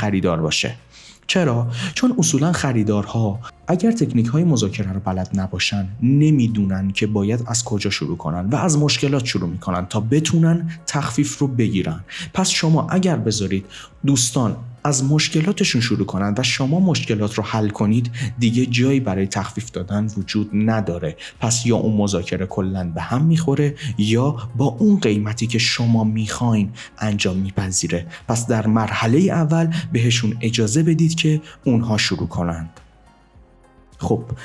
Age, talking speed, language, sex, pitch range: 30-49, 140 wpm, Persian, male, 105-145 Hz